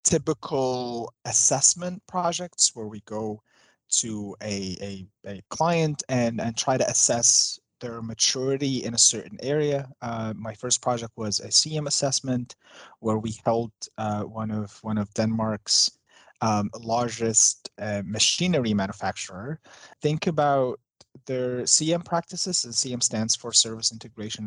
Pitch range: 105-130 Hz